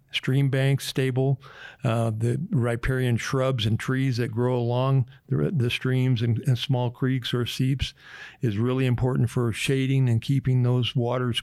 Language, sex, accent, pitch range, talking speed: English, male, American, 120-135 Hz, 160 wpm